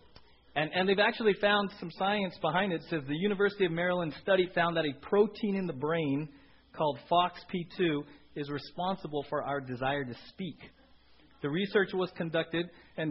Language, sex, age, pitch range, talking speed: English, male, 30-49, 135-185 Hz, 170 wpm